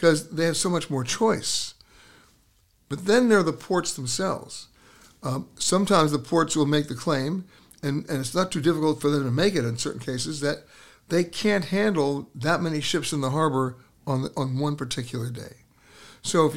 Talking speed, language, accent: 190 wpm, English, American